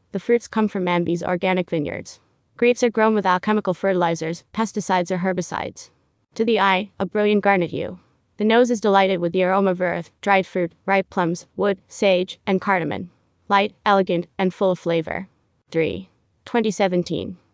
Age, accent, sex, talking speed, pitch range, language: 20-39, American, female, 165 wpm, 175-210 Hz, English